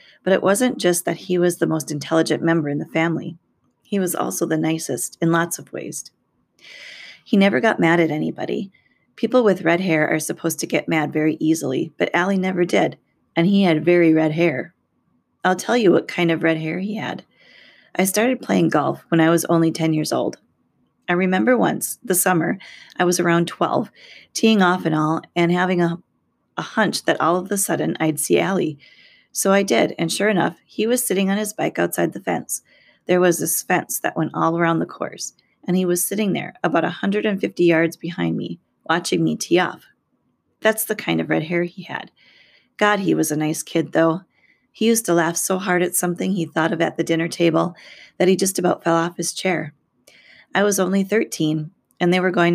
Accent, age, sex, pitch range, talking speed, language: American, 30-49, female, 160-190 Hz, 210 wpm, English